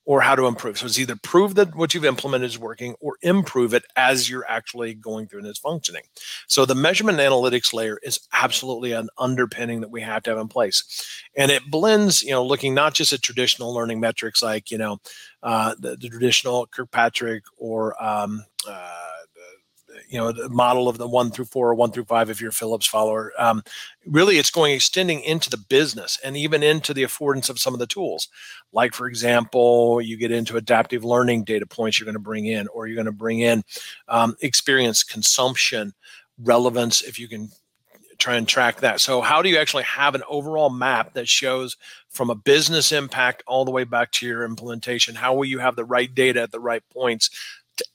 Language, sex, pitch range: English, male, 115-135 Hz